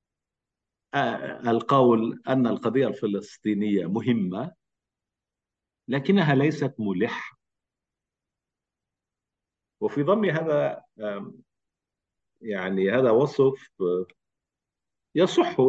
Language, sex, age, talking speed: English, male, 50-69, 55 wpm